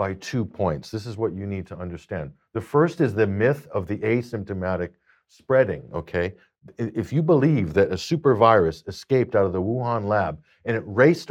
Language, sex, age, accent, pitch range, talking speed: English, male, 50-69, American, 90-120 Hz, 190 wpm